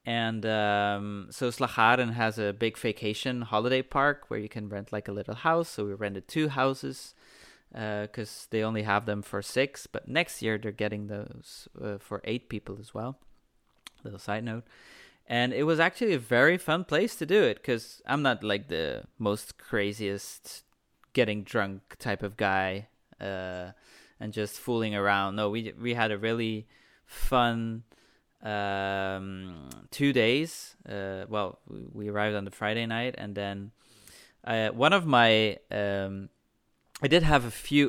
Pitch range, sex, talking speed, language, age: 105-130 Hz, male, 165 wpm, English, 20-39